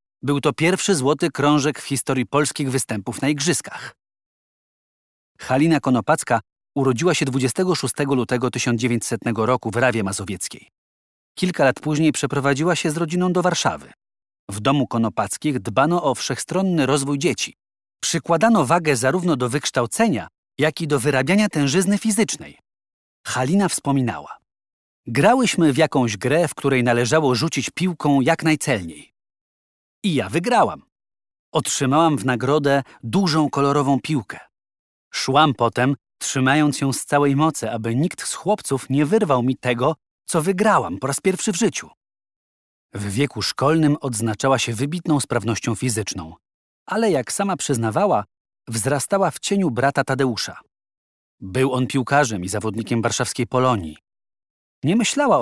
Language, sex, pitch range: Polish, male, 115-155 Hz